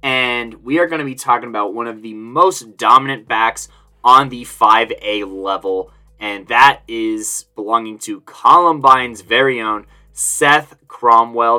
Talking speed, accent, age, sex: 145 wpm, American, 20-39, male